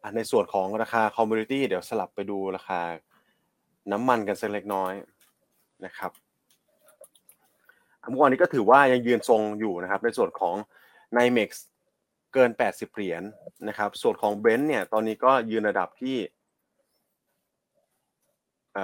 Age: 20-39